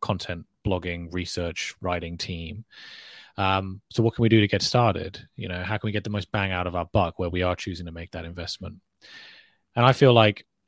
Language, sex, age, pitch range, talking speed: English, male, 20-39, 90-110 Hz, 220 wpm